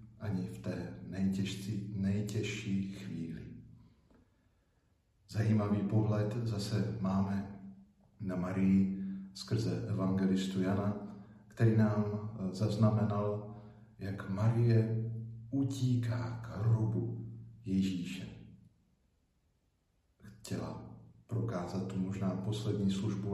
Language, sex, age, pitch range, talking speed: Slovak, male, 50-69, 95-115 Hz, 75 wpm